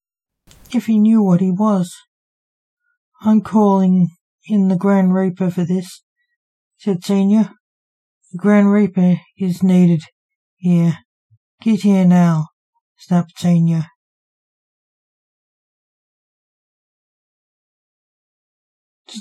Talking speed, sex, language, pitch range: 85 wpm, male, English, 175-220 Hz